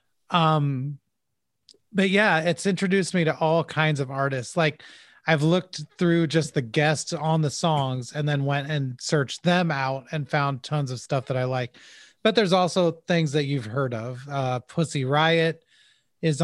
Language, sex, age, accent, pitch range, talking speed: English, male, 30-49, American, 135-165 Hz, 175 wpm